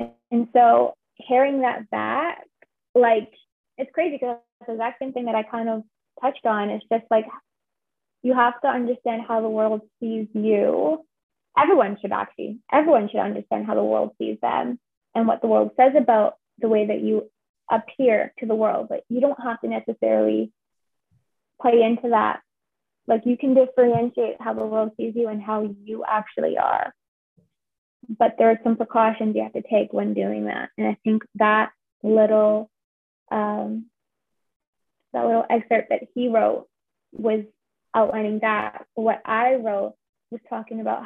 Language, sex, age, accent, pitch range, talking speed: English, female, 20-39, American, 215-240 Hz, 165 wpm